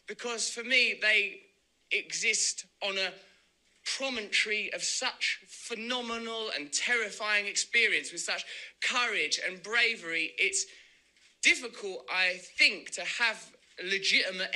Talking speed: 105 wpm